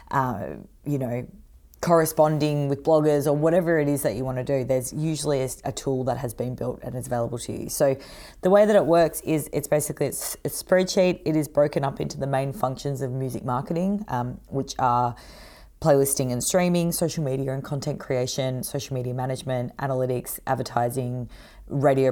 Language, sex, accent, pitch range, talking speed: English, female, Australian, 125-155 Hz, 185 wpm